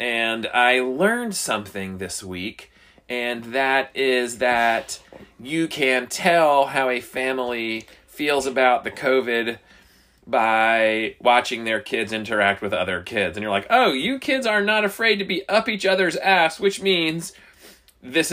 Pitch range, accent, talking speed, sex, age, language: 125-205 Hz, American, 150 wpm, male, 30-49, English